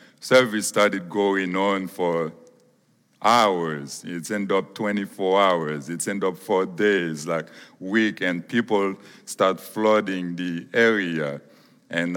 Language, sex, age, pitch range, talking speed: English, male, 50-69, 85-100 Hz, 130 wpm